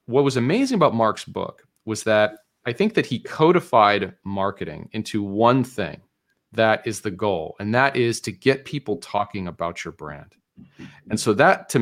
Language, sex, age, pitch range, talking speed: English, male, 40-59, 95-125 Hz, 180 wpm